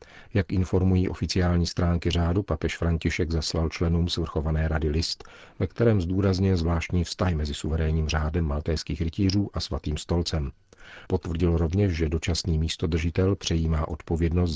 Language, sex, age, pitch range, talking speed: Czech, male, 40-59, 80-95 Hz, 130 wpm